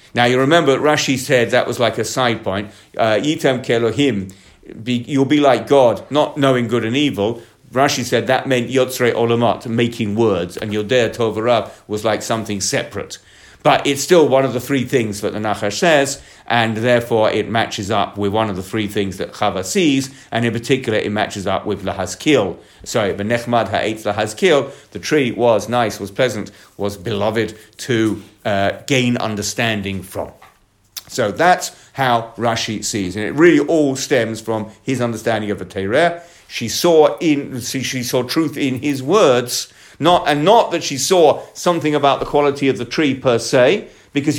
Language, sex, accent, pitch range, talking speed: English, male, British, 105-135 Hz, 165 wpm